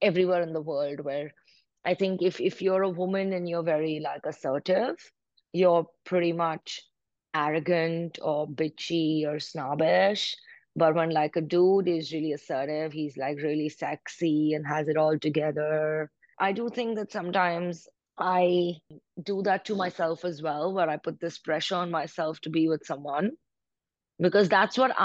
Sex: female